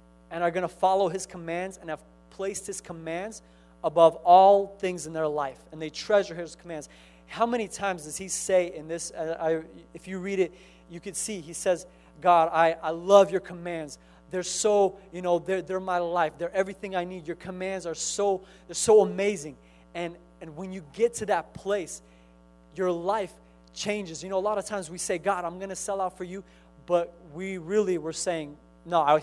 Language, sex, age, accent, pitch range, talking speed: English, male, 30-49, American, 155-190 Hz, 205 wpm